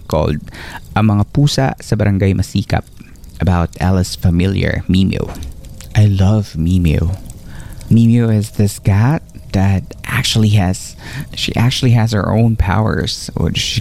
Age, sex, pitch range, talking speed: 20-39, male, 95-115 Hz, 125 wpm